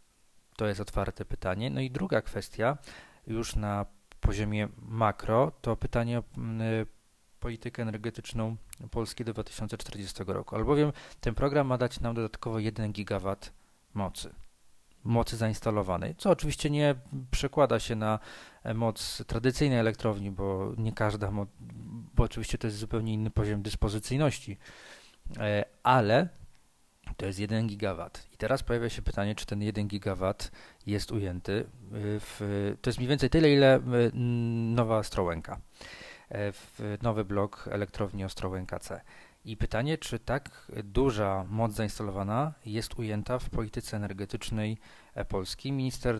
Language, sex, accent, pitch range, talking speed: Polish, male, native, 100-120 Hz, 130 wpm